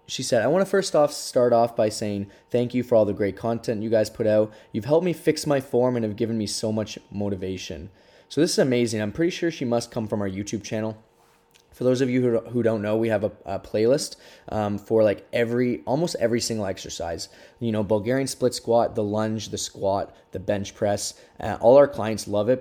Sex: male